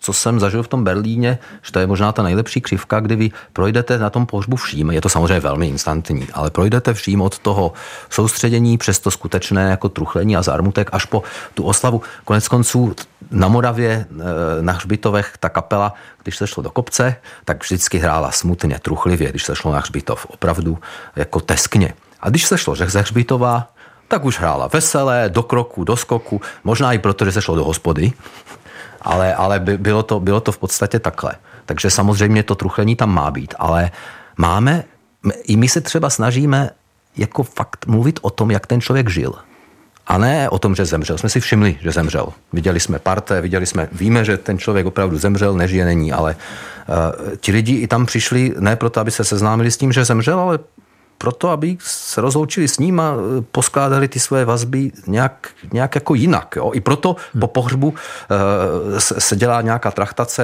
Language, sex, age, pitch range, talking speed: Czech, male, 40-59, 95-120 Hz, 185 wpm